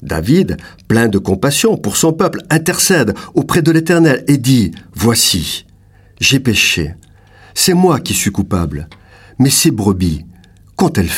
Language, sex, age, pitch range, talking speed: French, male, 50-69, 95-140 Hz, 140 wpm